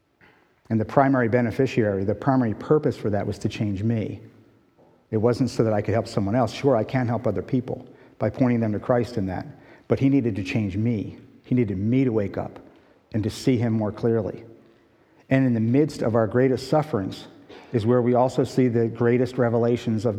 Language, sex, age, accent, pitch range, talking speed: English, male, 50-69, American, 105-130 Hz, 210 wpm